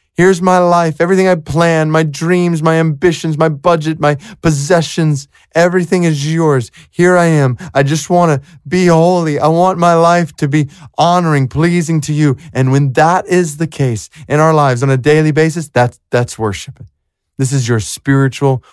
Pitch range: 110-145 Hz